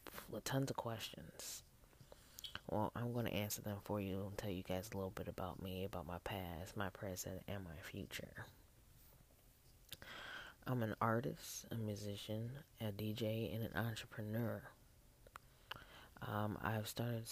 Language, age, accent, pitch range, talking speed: English, 20-39, American, 105-115 Hz, 145 wpm